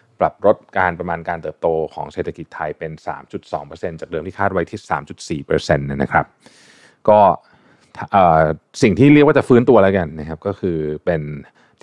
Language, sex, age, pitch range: Thai, male, 20-39, 80-110 Hz